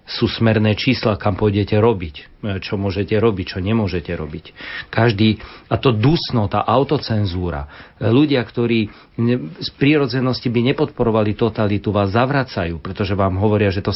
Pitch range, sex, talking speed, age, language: 100-115 Hz, male, 140 wpm, 40-59, Slovak